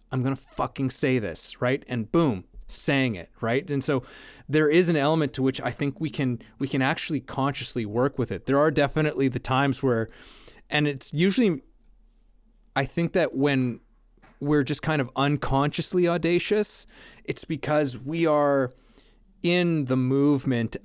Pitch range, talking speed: 115-145 Hz, 165 wpm